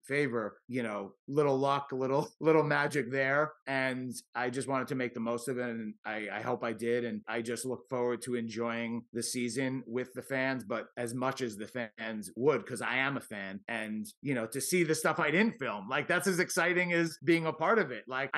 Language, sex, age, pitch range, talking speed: English, male, 30-49, 125-160 Hz, 230 wpm